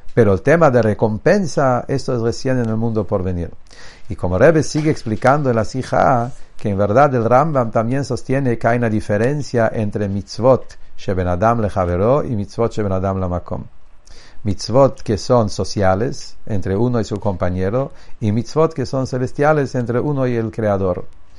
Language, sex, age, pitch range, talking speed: English, male, 50-69, 100-130 Hz, 165 wpm